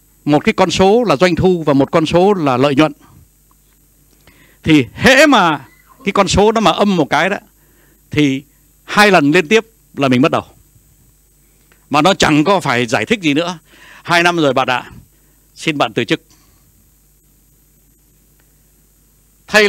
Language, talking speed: Vietnamese, 165 wpm